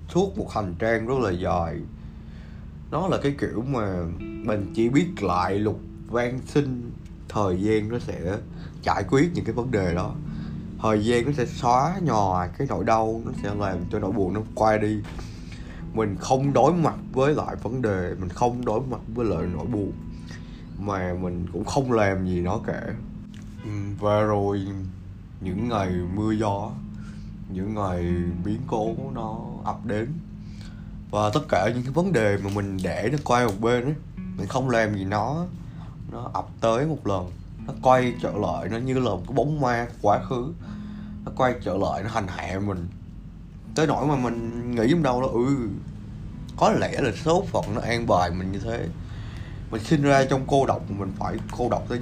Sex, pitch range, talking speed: male, 95-120 Hz, 185 wpm